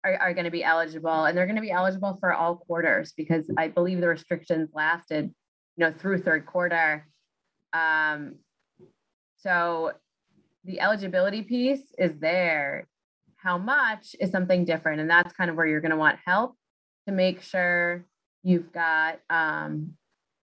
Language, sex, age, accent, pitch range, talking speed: English, female, 20-39, American, 160-185 Hz, 155 wpm